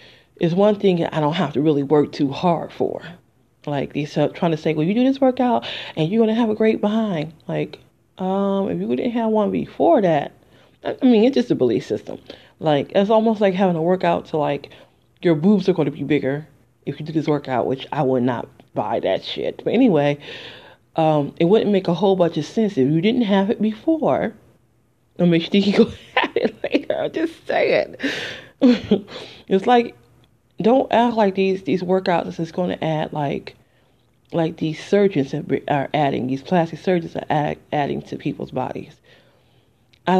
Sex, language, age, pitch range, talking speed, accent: female, English, 30-49, 145-210 Hz, 195 wpm, American